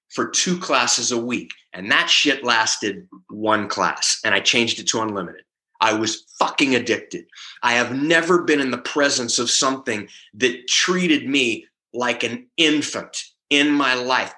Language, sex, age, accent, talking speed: English, male, 30-49, American, 165 wpm